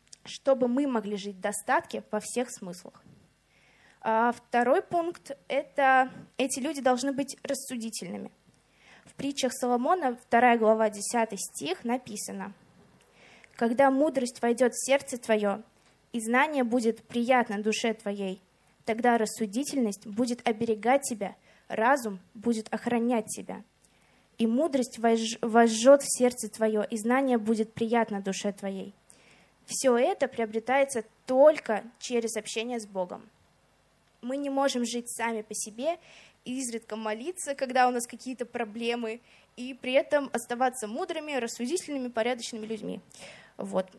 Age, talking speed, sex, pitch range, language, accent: 20-39, 120 wpm, female, 225-270 Hz, Russian, native